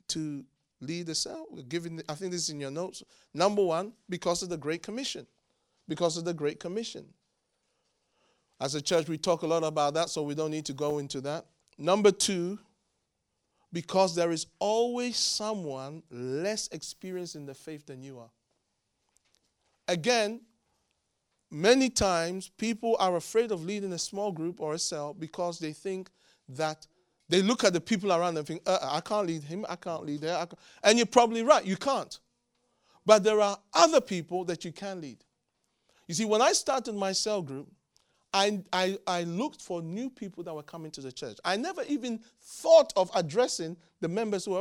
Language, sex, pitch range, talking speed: English, male, 160-215 Hz, 185 wpm